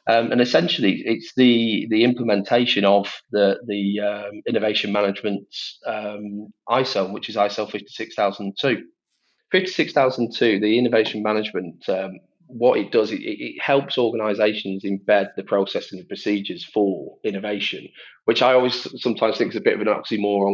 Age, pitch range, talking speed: 30-49, 100-110 Hz, 145 wpm